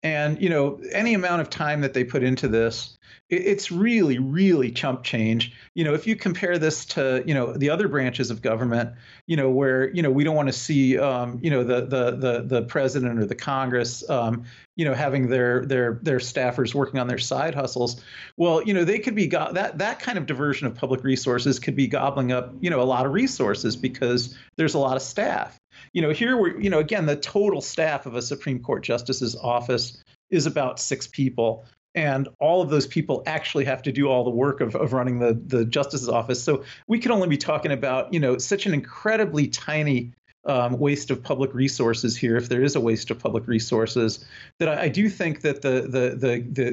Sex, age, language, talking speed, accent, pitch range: male, 40-59, English, 220 wpm, American, 125-150 Hz